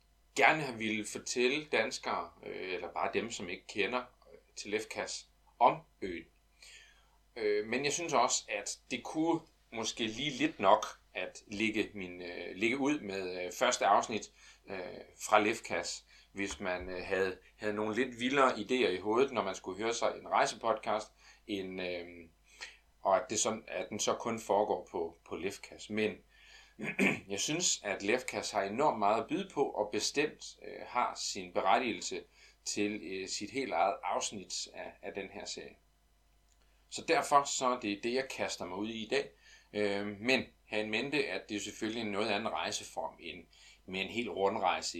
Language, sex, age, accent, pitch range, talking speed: Danish, male, 30-49, native, 95-125 Hz, 160 wpm